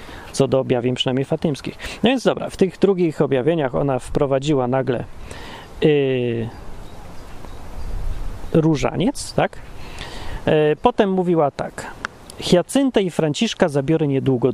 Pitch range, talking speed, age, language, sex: 135-195 Hz, 110 wpm, 30-49, Polish, male